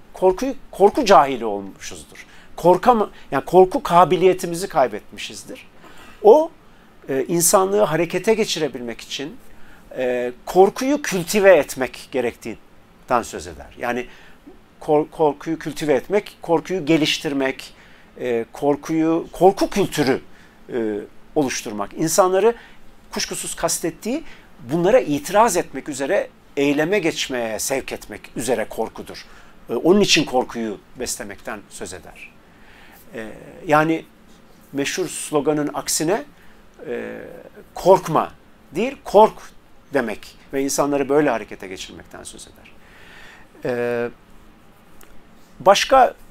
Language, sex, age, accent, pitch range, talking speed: Turkish, male, 50-69, native, 140-195 Hz, 90 wpm